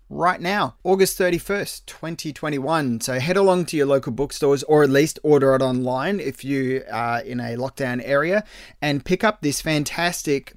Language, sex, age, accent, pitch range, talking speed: English, male, 20-39, Australian, 120-155 Hz, 170 wpm